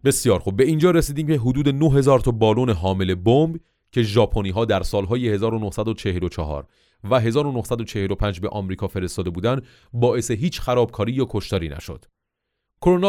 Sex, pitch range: male, 100-130 Hz